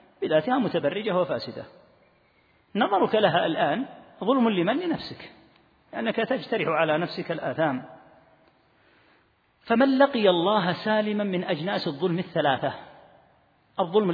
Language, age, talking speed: Arabic, 40-59, 100 wpm